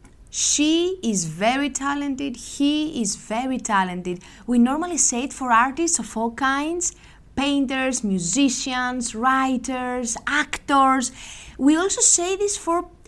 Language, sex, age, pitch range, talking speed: Greek, female, 30-49, 225-315 Hz, 120 wpm